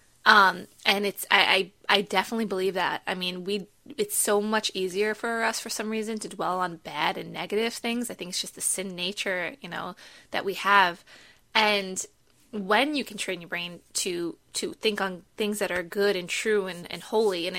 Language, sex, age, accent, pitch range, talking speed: English, female, 20-39, American, 185-235 Hz, 210 wpm